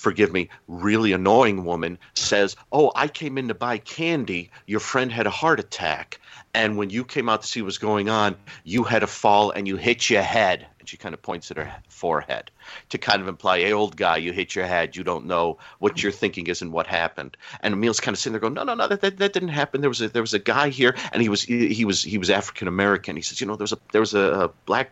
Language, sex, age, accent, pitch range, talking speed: English, male, 40-59, American, 95-115 Hz, 265 wpm